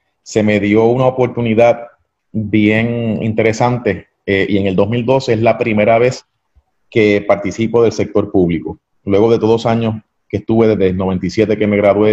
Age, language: 30-49, Spanish